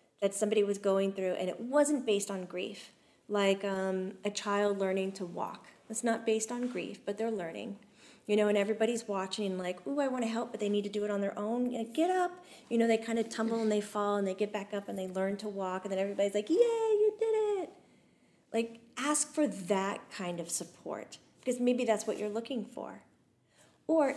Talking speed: 225 wpm